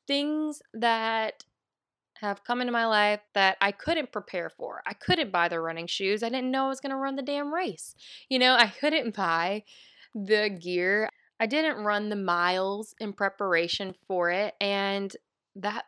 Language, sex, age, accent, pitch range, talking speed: English, female, 20-39, American, 185-230 Hz, 180 wpm